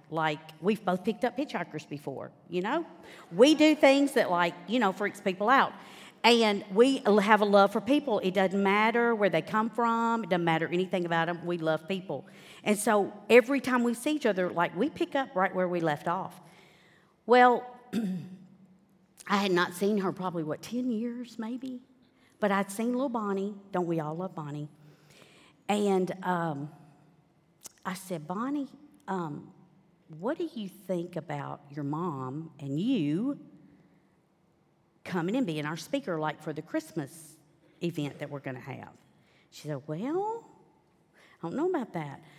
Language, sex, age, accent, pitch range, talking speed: English, female, 50-69, American, 160-225 Hz, 165 wpm